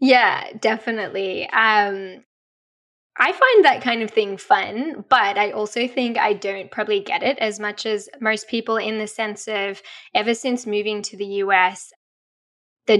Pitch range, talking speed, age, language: 195-245 Hz, 160 wpm, 10-29, English